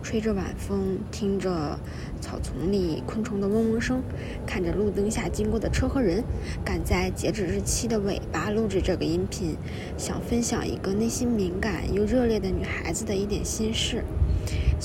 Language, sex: Chinese, female